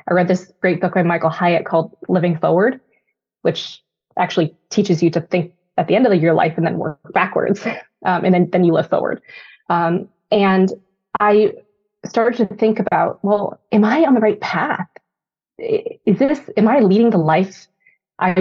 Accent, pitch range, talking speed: American, 175-220 Hz, 185 wpm